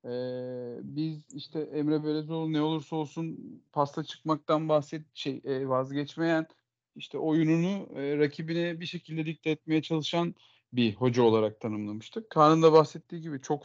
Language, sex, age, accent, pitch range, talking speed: Turkish, male, 40-59, native, 130-165 Hz, 130 wpm